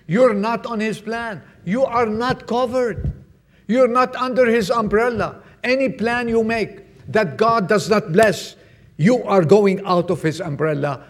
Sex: male